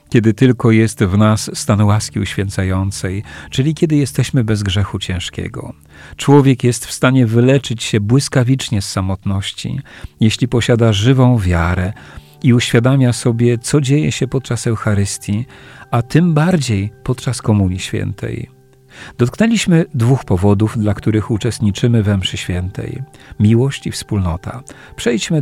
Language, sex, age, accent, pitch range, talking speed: Polish, male, 50-69, native, 105-135 Hz, 125 wpm